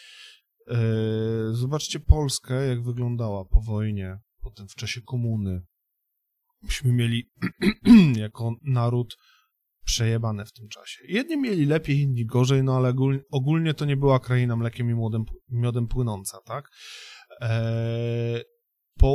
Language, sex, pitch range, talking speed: Polish, male, 115-135 Hz, 115 wpm